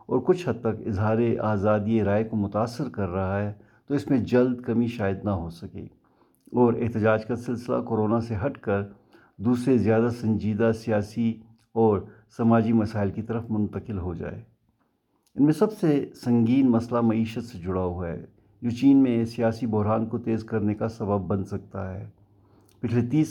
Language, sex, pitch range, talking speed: Urdu, male, 105-120 Hz, 170 wpm